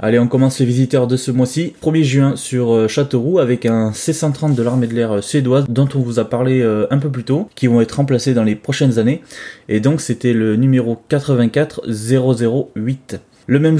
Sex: male